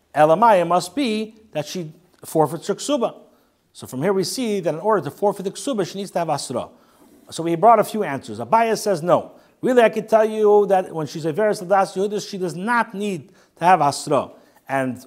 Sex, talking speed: male, 210 wpm